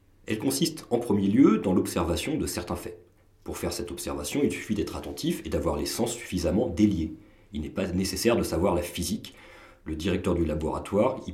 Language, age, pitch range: French, 40-59, 90-110 Hz